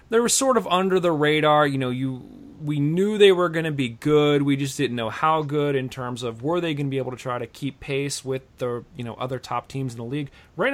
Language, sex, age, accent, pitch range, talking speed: English, male, 30-49, American, 125-160 Hz, 275 wpm